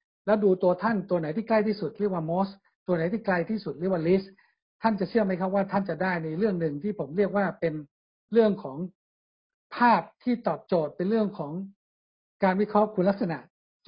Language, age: Thai, 60-79